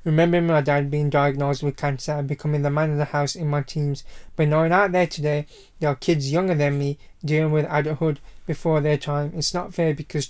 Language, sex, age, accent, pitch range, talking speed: English, male, 20-39, British, 145-155 Hz, 220 wpm